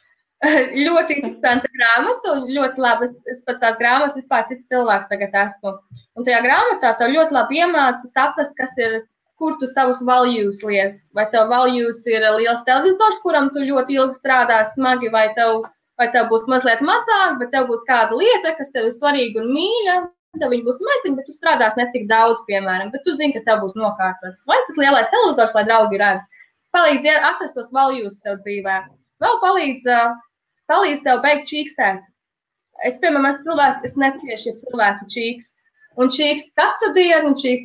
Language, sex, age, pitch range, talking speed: English, female, 20-39, 225-295 Hz, 165 wpm